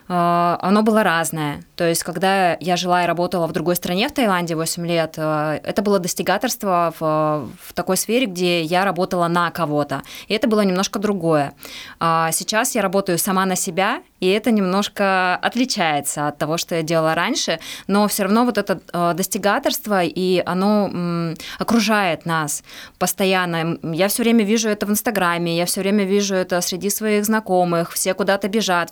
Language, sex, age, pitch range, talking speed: Russian, female, 20-39, 175-210 Hz, 165 wpm